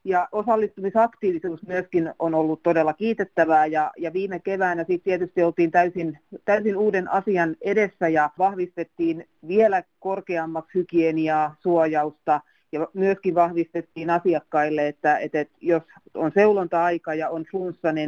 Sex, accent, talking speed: female, native, 125 wpm